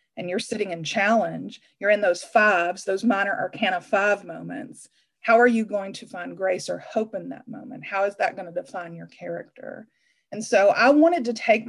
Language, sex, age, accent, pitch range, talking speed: English, female, 30-49, American, 185-245 Hz, 200 wpm